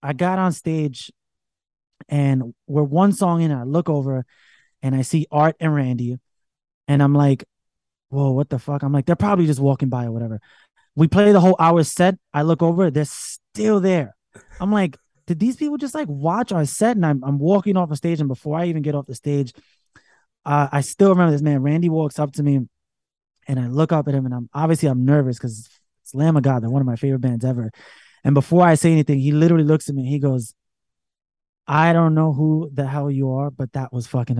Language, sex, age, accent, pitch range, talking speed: English, male, 20-39, American, 130-165 Hz, 225 wpm